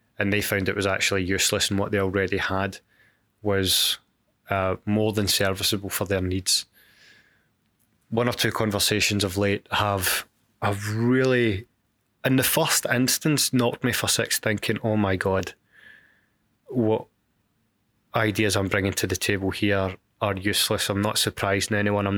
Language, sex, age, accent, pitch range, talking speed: English, male, 20-39, British, 100-110 Hz, 150 wpm